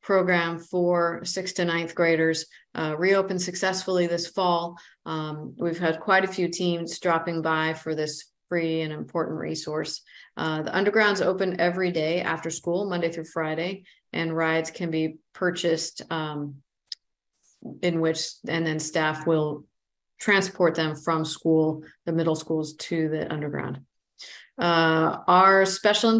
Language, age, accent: English, 40-59, American